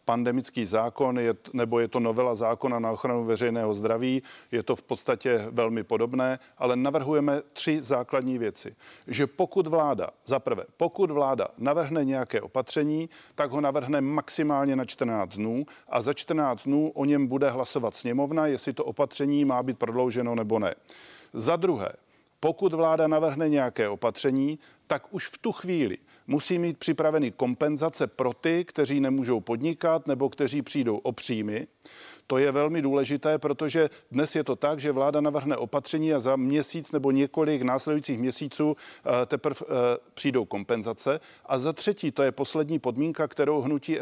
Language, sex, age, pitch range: Czech, male, 40-59, 125-155 Hz